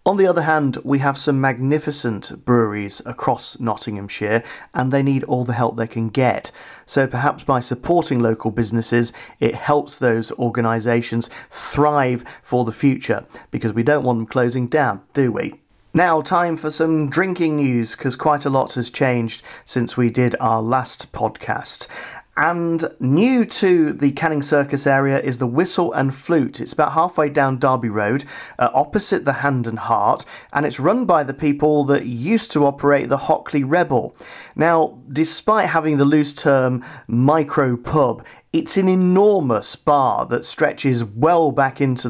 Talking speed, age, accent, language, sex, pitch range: 165 wpm, 40-59, British, English, male, 120-150 Hz